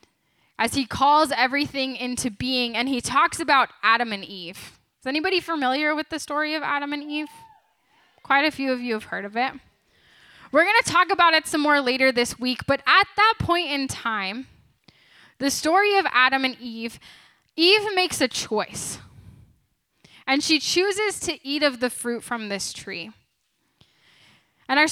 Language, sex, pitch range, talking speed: English, female, 245-315 Hz, 170 wpm